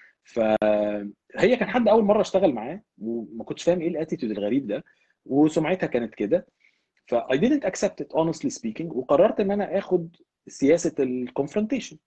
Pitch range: 110-175 Hz